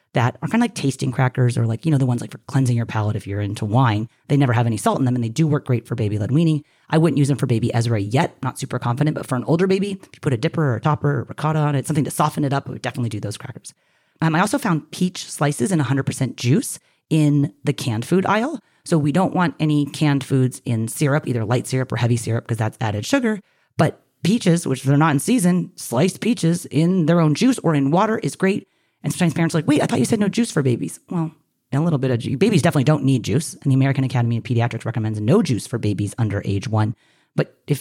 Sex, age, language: female, 30-49, English